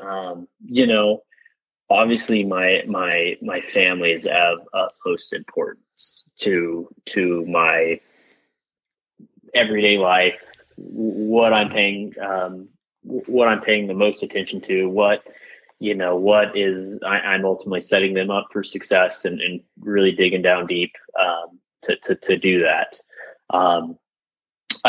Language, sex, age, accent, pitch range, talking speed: English, male, 20-39, American, 90-105 Hz, 135 wpm